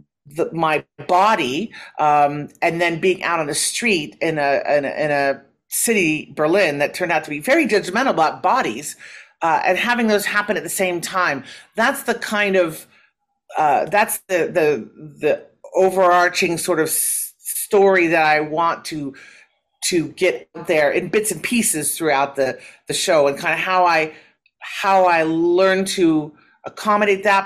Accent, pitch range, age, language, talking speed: American, 160-215 Hz, 40-59, English, 160 wpm